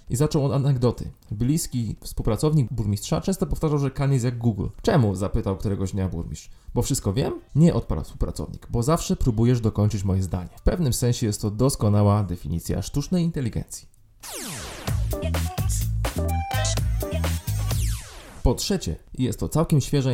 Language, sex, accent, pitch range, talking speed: Polish, male, native, 105-130 Hz, 135 wpm